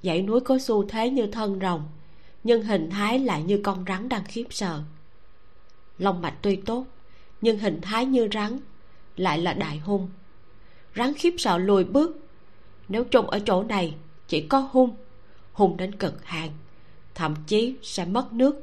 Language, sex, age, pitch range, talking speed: Vietnamese, female, 20-39, 160-220 Hz, 170 wpm